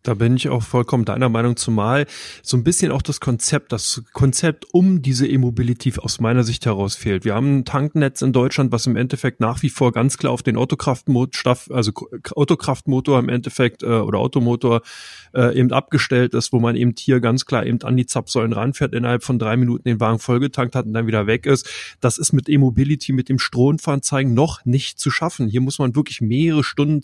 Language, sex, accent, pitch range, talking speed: German, male, German, 125-145 Hz, 200 wpm